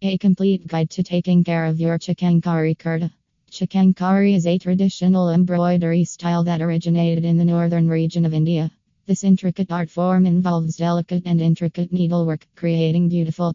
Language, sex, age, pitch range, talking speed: English, female, 20-39, 160-175 Hz, 155 wpm